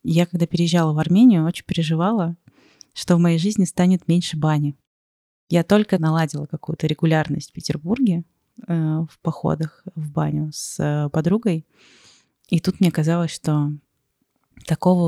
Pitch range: 155-175 Hz